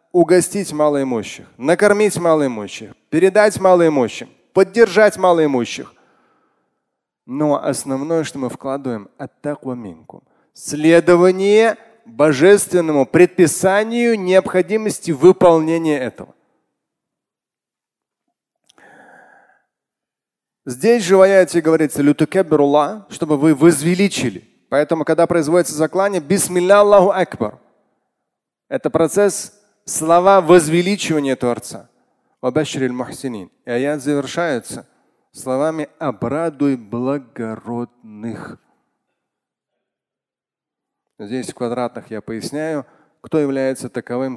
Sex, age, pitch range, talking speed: male, 30-49, 130-185 Hz, 70 wpm